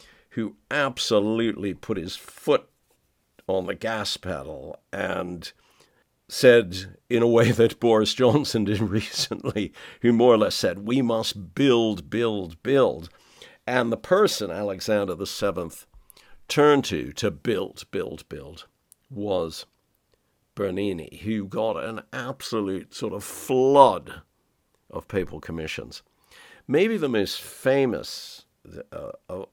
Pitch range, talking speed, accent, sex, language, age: 100-125 Hz, 120 wpm, American, male, English, 60-79